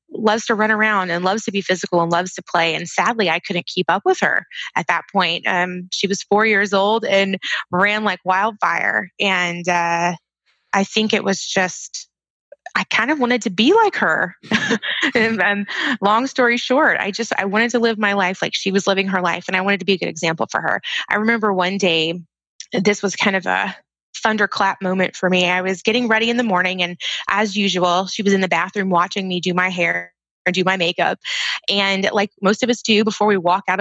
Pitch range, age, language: 185-225 Hz, 20-39, English